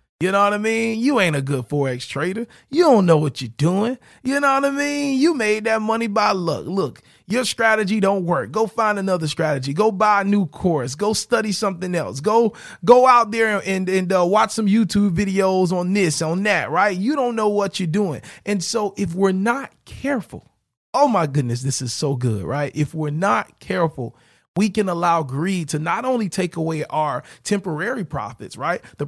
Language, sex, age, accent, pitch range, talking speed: English, male, 30-49, American, 150-205 Hz, 210 wpm